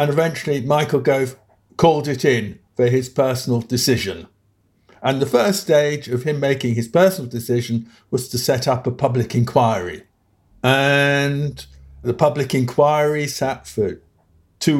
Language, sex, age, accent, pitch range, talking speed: English, male, 50-69, British, 120-155 Hz, 140 wpm